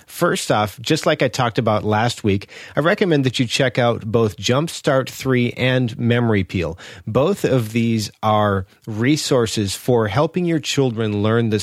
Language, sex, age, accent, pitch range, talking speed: English, male, 40-59, American, 110-135 Hz, 165 wpm